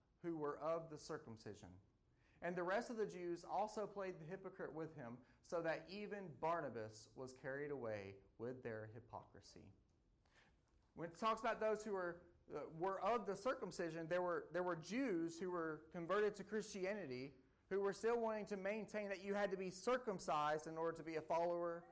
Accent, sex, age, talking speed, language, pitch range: American, male, 30-49, 185 wpm, English, 145-220 Hz